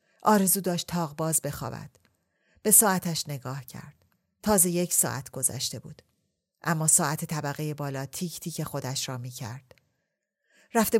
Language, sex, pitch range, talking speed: Persian, female, 140-180 Hz, 125 wpm